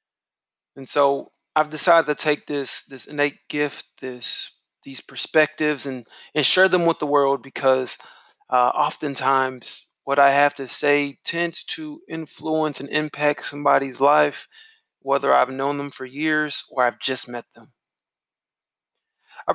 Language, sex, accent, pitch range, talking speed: English, male, American, 140-165 Hz, 145 wpm